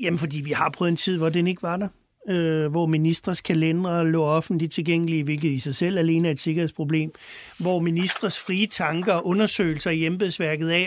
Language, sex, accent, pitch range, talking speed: Danish, male, native, 160-205 Hz, 195 wpm